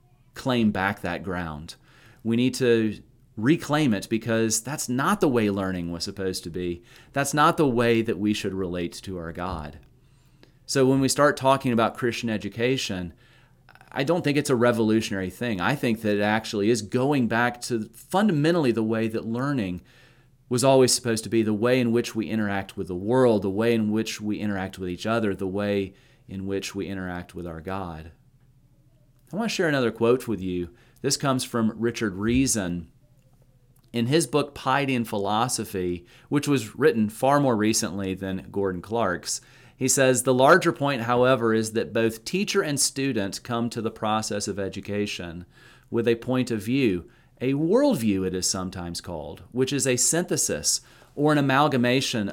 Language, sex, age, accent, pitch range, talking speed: English, male, 30-49, American, 100-130 Hz, 180 wpm